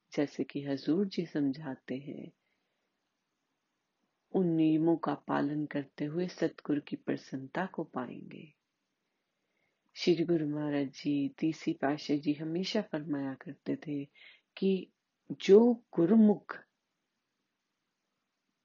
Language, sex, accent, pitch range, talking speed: Hindi, female, native, 145-190 Hz, 85 wpm